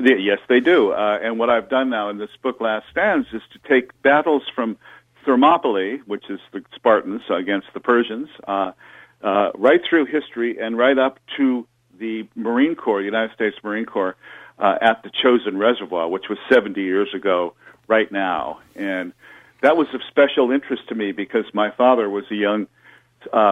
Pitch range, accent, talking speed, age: 105-130 Hz, American, 180 wpm, 50-69